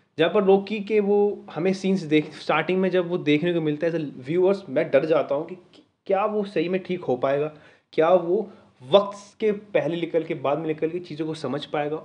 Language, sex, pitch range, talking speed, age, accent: Hindi, male, 145-185 Hz, 230 wpm, 20-39, native